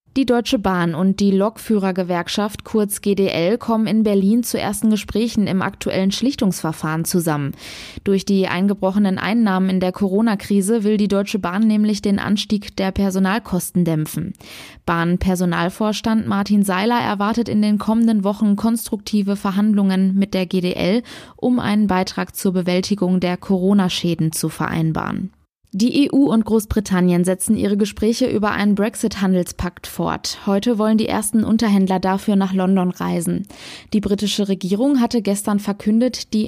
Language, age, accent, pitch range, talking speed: German, 20-39, German, 190-220 Hz, 140 wpm